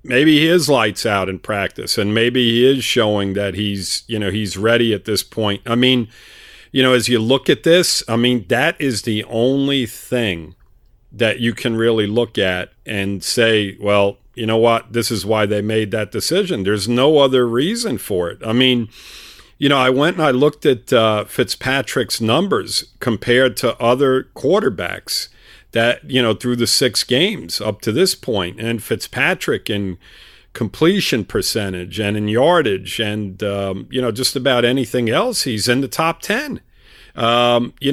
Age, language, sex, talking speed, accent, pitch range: 50-69, English, male, 180 wpm, American, 105-130 Hz